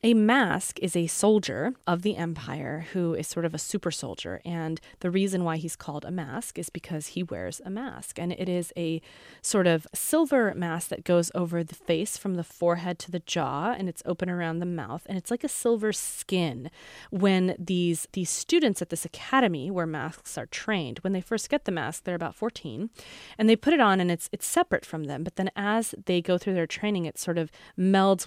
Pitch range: 165-205 Hz